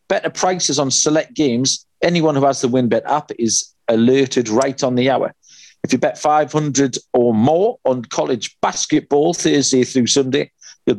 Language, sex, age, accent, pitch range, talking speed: English, male, 40-59, British, 120-150 Hz, 165 wpm